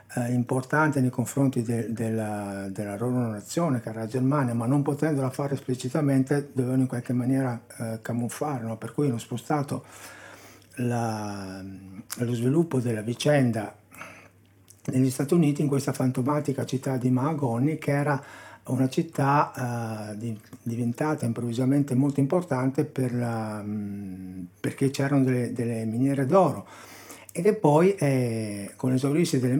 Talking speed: 140 wpm